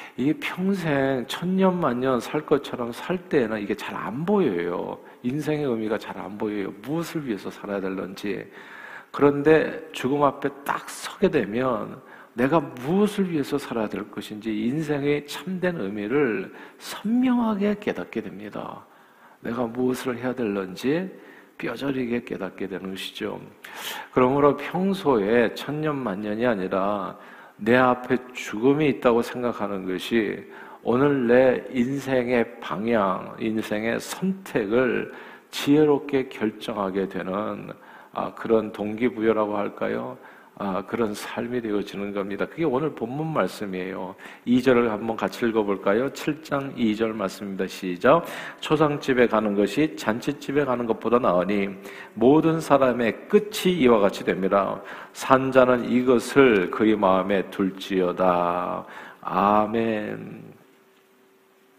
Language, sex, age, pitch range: Korean, male, 50-69, 105-140 Hz